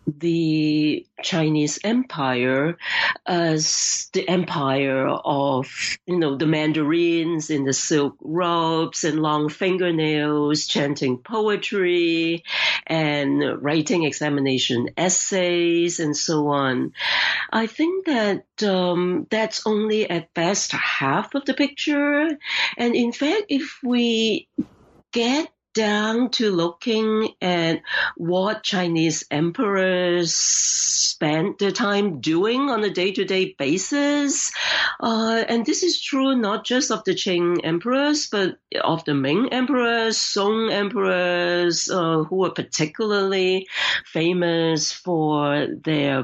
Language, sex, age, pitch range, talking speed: English, female, 50-69, 155-220 Hz, 110 wpm